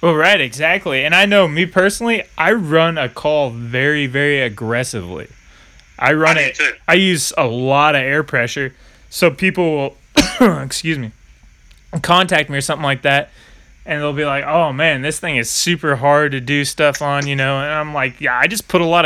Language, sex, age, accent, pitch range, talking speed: English, male, 20-39, American, 130-160 Hz, 195 wpm